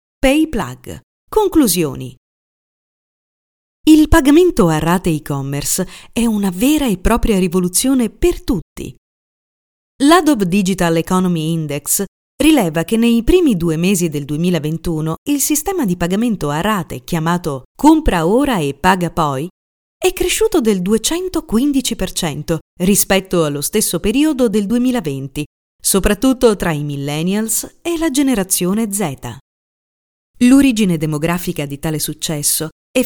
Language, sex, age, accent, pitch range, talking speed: Italian, female, 40-59, native, 160-245 Hz, 115 wpm